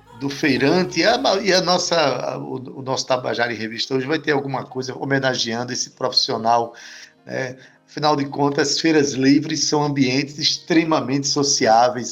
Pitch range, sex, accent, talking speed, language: 130-160 Hz, male, Brazilian, 160 wpm, Portuguese